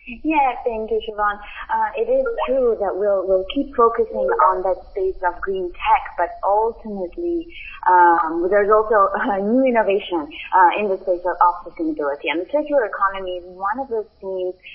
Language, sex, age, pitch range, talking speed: English, female, 20-39, 185-265 Hz, 170 wpm